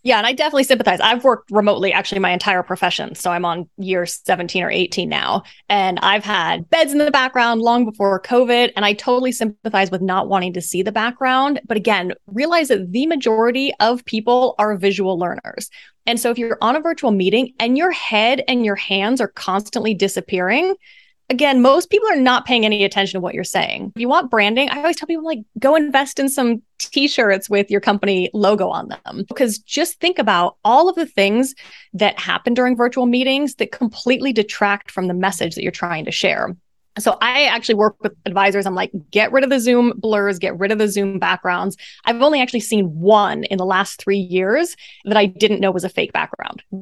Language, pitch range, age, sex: English, 195-265 Hz, 20-39, female